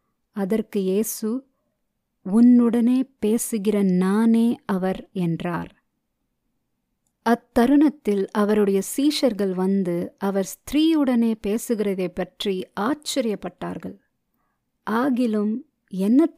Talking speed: 65 wpm